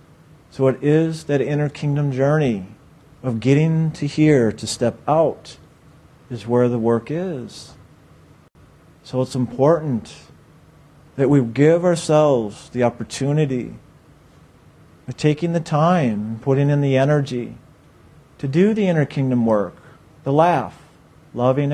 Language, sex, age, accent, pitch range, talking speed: English, male, 50-69, American, 130-170 Hz, 125 wpm